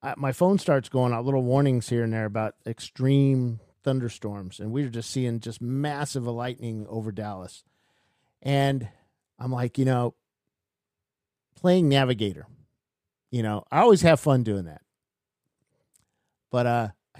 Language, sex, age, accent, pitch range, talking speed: English, male, 50-69, American, 115-145 Hz, 140 wpm